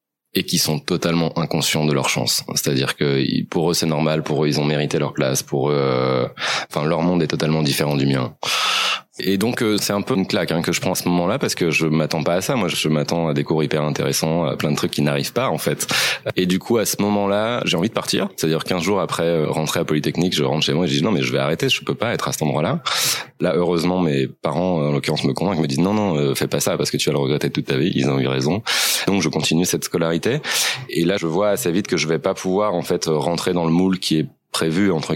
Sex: male